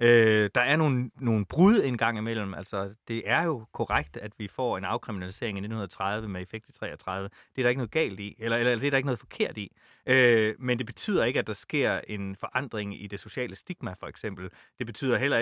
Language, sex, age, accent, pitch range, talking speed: Danish, male, 30-49, native, 100-125 Hz, 235 wpm